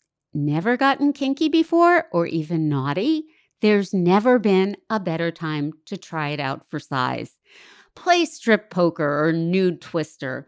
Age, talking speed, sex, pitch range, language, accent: 50-69, 145 wpm, female, 150-235 Hz, English, American